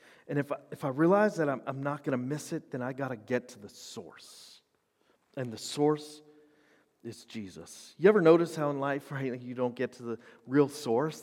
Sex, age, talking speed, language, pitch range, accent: male, 40-59, 215 wpm, English, 150-220 Hz, American